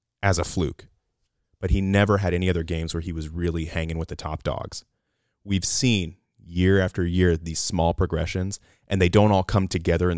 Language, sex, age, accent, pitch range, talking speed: English, male, 30-49, American, 85-100 Hz, 200 wpm